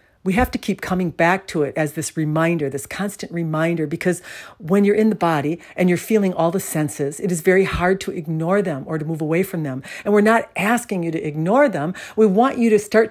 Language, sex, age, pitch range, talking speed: English, female, 60-79, 145-190 Hz, 240 wpm